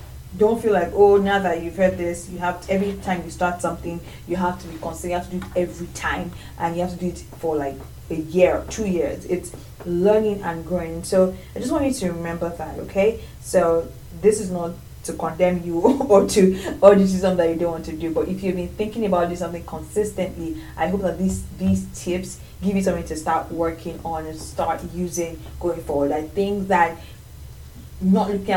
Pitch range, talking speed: 170-195 Hz, 220 wpm